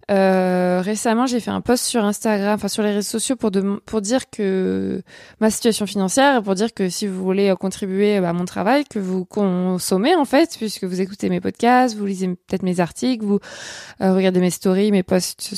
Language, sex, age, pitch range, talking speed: French, female, 20-39, 185-220 Hz, 200 wpm